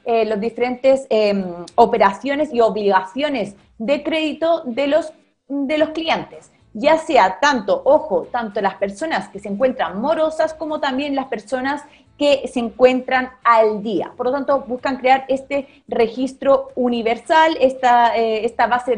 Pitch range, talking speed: 215-280 Hz, 145 wpm